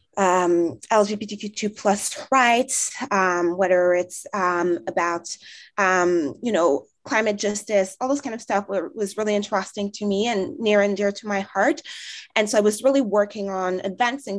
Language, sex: French, female